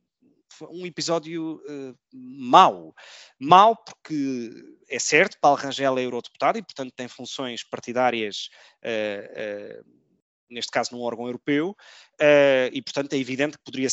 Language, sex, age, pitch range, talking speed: Portuguese, male, 20-39, 125-160 Hz, 115 wpm